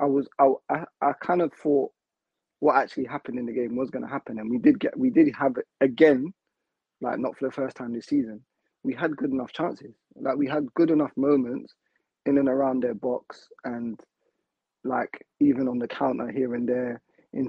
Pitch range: 130-160 Hz